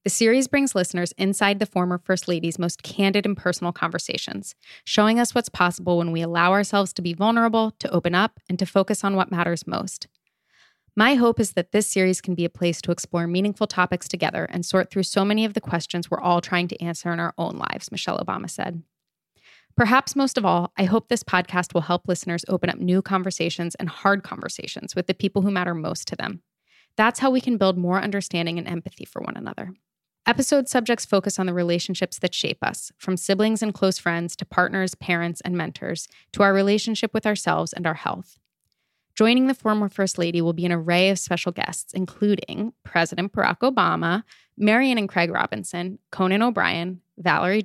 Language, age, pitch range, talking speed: English, 20-39, 175-210 Hz, 200 wpm